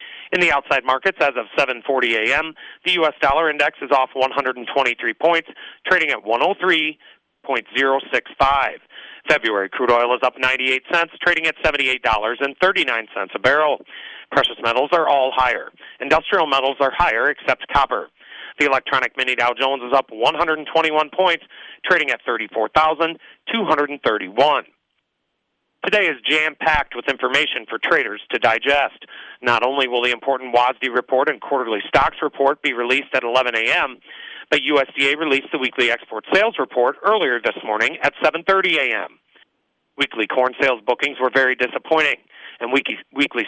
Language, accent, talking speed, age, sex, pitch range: English, American, 140 wpm, 40-59, male, 130-155 Hz